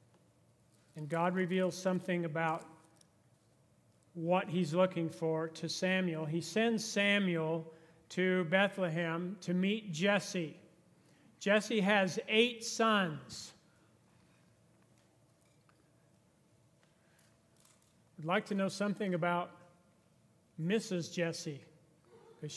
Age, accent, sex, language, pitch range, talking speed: 40-59, American, male, English, 165-210 Hz, 85 wpm